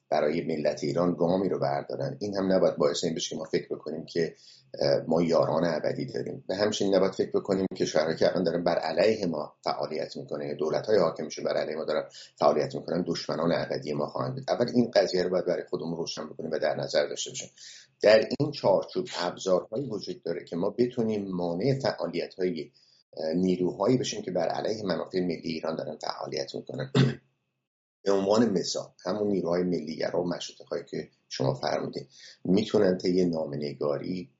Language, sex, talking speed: English, male, 180 wpm